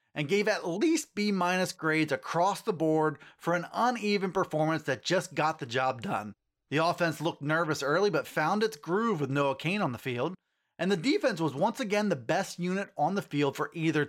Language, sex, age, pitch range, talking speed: English, male, 30-49, 145-195 Hz, 205 wpm